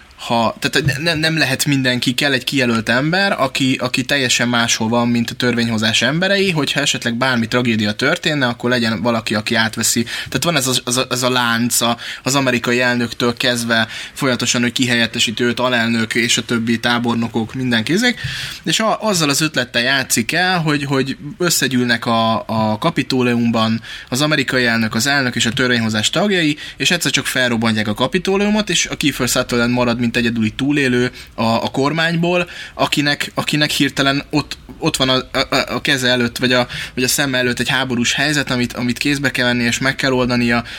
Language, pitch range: Hungarian, 115-140 Hz